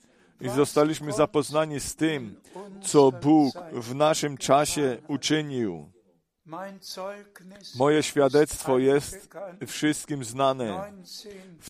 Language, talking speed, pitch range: Polish, 85 wpm, 135-160 Hz